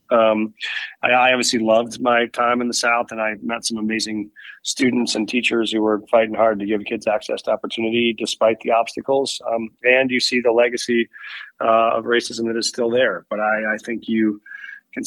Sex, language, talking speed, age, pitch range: male, English, 200 wpm, 30-49, 105-115 Hz